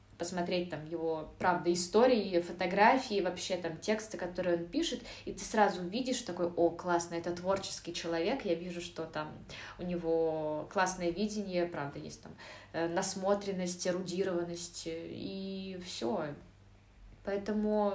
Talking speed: 125 wpm